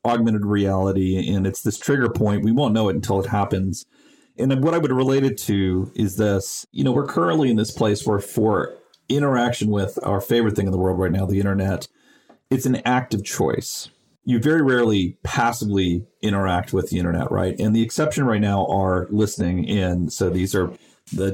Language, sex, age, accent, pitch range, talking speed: English, male, 40-59, American, 95-120 Hz, 195 wpm